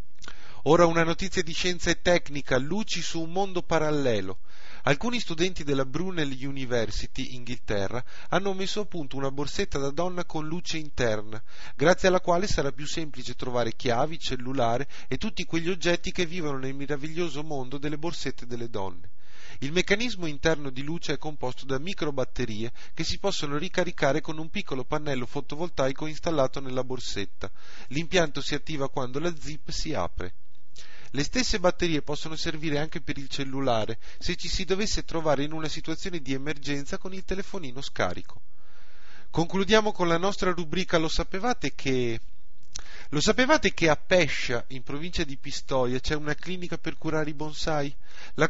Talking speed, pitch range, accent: 160 wpm, 130-175 Hz, native